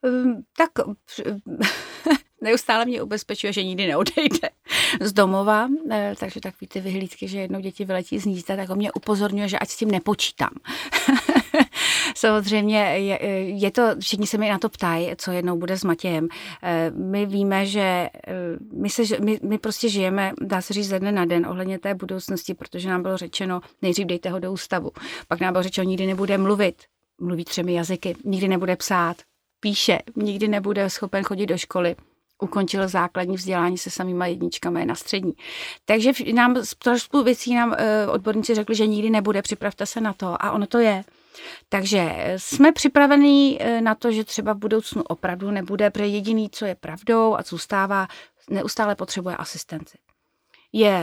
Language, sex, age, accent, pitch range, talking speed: Czech, female, 30-49, native, 185-225 Hz, 165 wpm